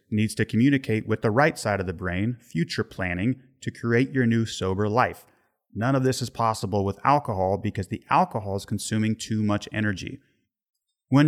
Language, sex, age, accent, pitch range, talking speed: English, male, 30-49, American, 105-135 Hz, 180 wpm